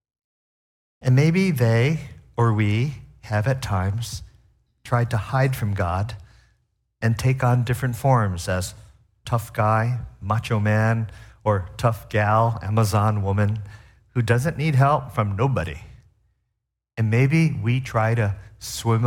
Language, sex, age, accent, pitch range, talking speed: English, male, 50-69, American, 105-130 Hz, 125 wpm